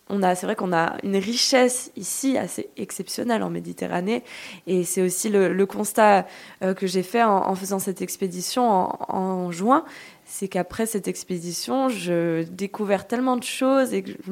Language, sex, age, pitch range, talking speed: French, female, 20-39, 185-245 Hz, 175 wpm